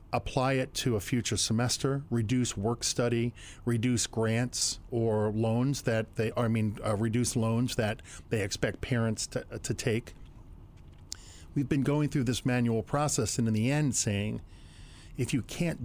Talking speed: 165 wpm